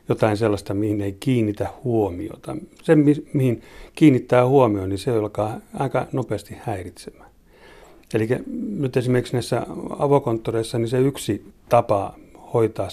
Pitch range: 100-130 Hz